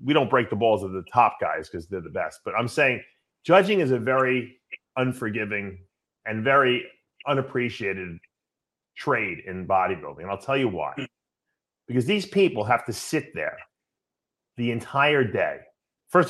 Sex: male